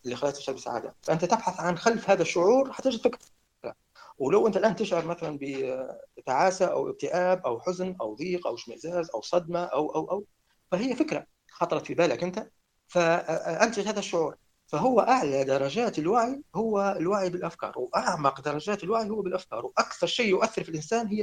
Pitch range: 145-200 Hz